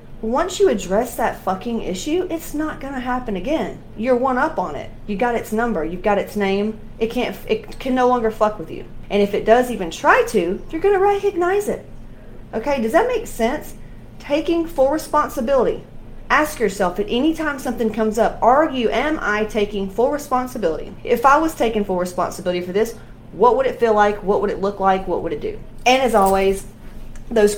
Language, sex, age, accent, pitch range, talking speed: English, female, 30-49, American, 195-250 Hz, 205 wpm